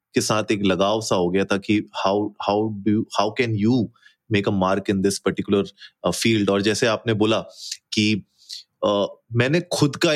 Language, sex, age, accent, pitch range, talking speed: Hindi, male, 30-49, native, 105-140 Hz, 155 wpm